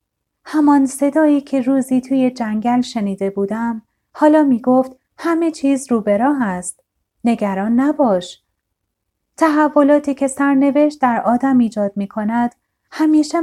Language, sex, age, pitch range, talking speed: Persian, female, 30-49, 205-280 Hz, 105 wpm